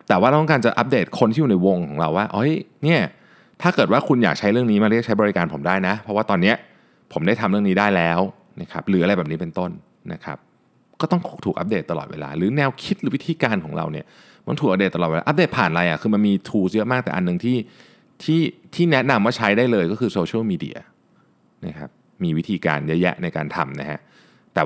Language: Thai